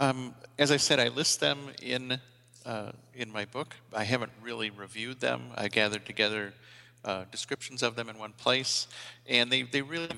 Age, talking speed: 50-69, 185 wpm